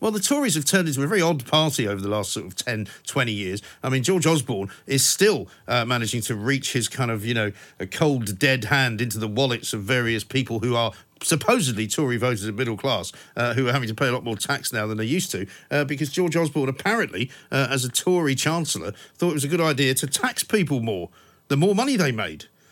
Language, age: English, 50-69